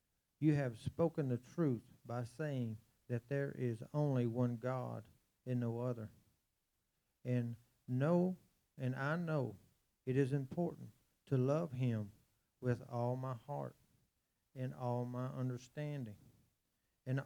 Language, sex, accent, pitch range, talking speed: English, male, American, 120-140 Hz, 125 wpm